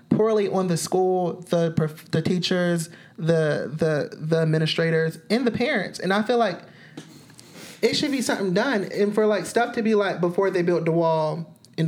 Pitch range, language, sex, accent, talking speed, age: 165-200 Hz, English, male, American, 180 wpm, 30-49